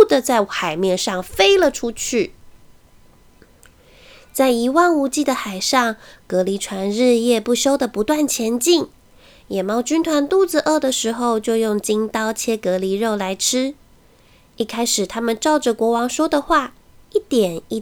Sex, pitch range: female, 215-315 Hz